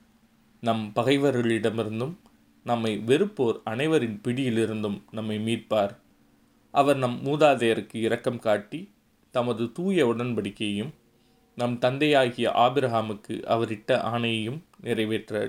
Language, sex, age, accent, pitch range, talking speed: Tamil, male, 30-49, native, 110-130 Hz, 85 wpm